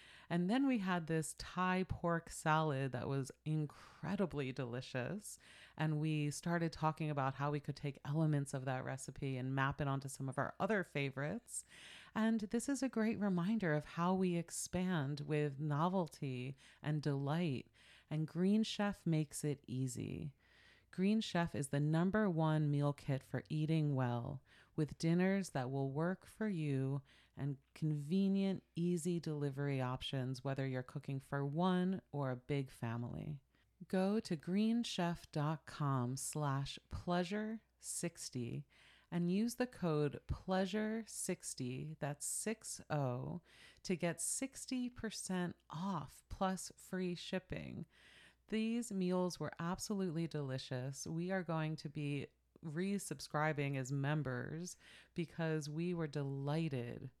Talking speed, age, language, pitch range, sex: 125 wpm, 30-49, English, 140-180 Hz, female